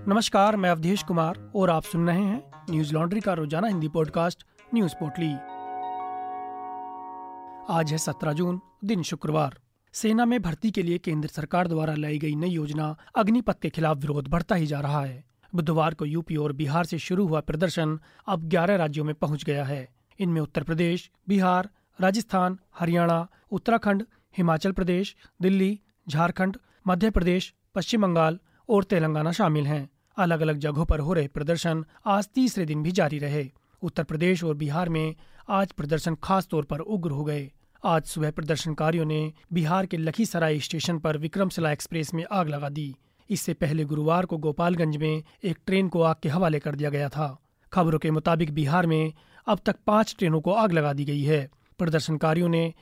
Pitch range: 155-185 Hz